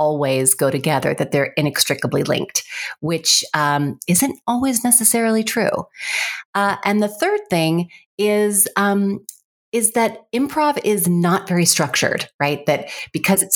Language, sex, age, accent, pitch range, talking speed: English, female, 30-49, American, 150-210 Hz, 135 wpm